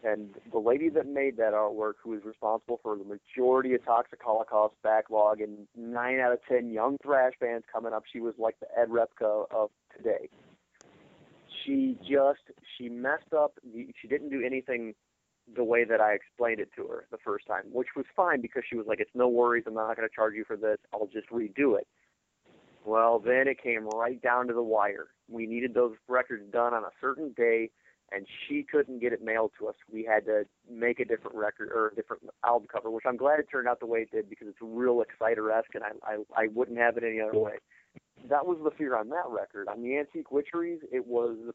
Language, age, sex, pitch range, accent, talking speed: English, 30-49, male, 110-130 Hz, American, 220 wpm